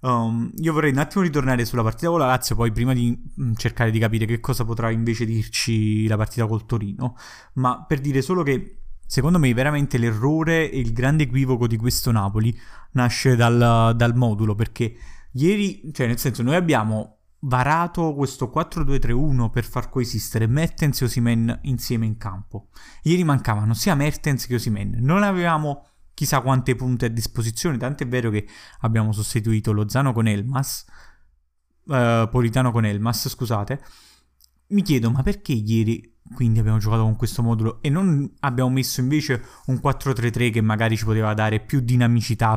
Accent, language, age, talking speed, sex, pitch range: native, Italian, 20-39, 165 wpm, male, 115-140 Hz